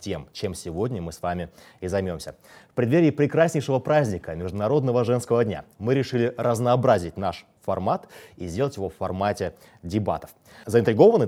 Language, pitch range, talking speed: Russian, 100-140 Hz, 140 wpm